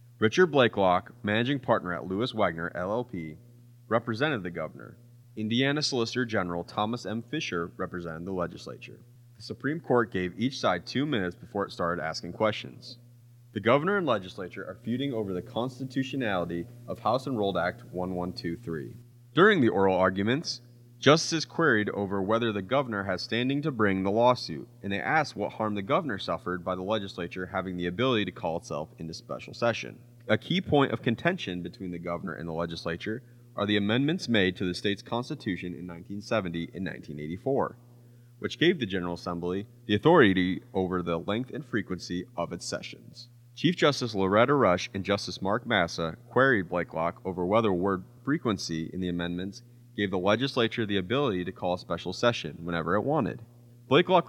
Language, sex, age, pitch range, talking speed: English, male, 30-49, 90-120 Hz, 170 wpm